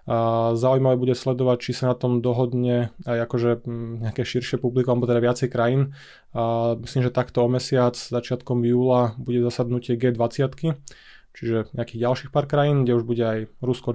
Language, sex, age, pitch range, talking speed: Slovak, male, 20-39, 120-130 Hz, 160 wpm